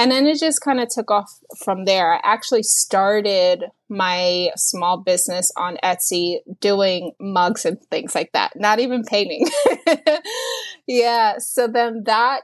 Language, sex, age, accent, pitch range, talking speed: English, female, 20-39, American, 190-245 Hz, 150 wpm